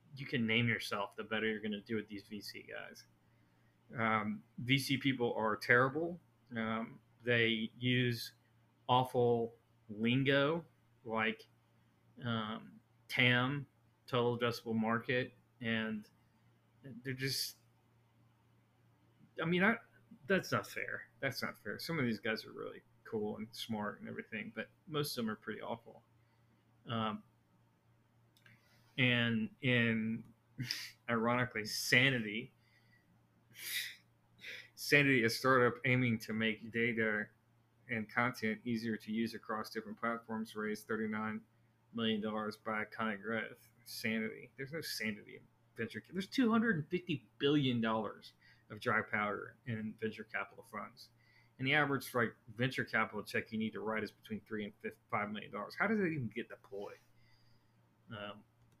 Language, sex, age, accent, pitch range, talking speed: English, male, 20-39, American, 110-125 Hz, 130 wpm